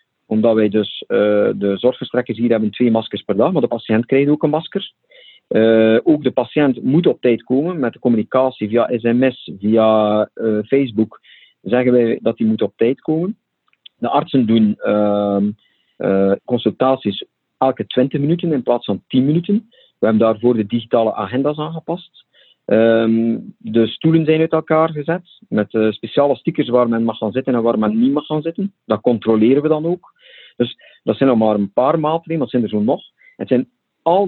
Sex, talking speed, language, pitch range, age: male, 190 wpm, Dutch, 110-150 Hz, 40-59